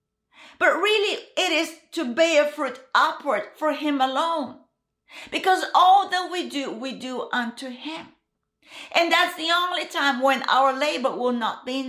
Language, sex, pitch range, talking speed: English, female, 270-340 Hz, 160 wpm